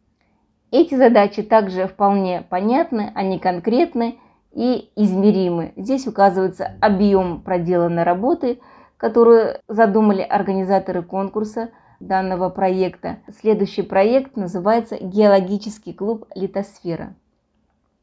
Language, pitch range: Russian, 190-235 Hz